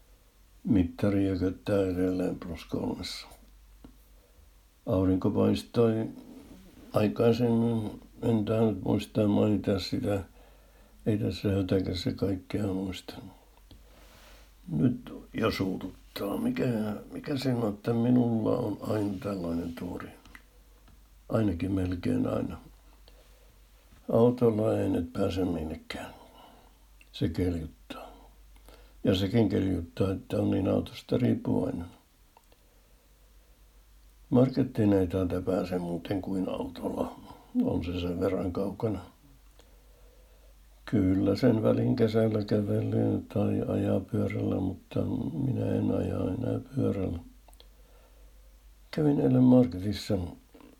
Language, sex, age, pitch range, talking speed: Finnish, male, 60-79, 95-115 Hz, 85 wpm